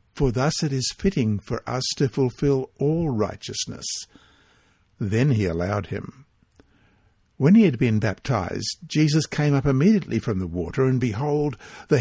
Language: English